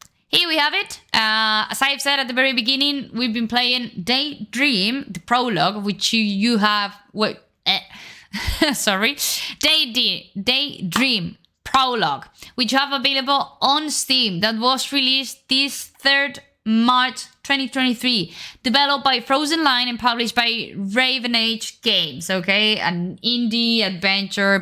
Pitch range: 200-270 Hz